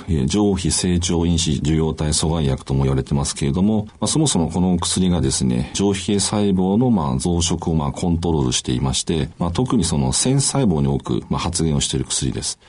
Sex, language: male, Japanese